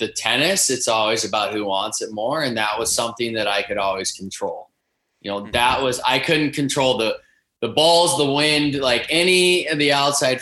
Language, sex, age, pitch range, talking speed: English, male, 20-39, 105-135 Hz, 200 wpm